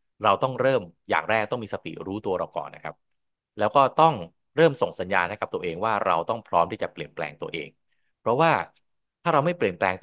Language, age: Thai, 20-39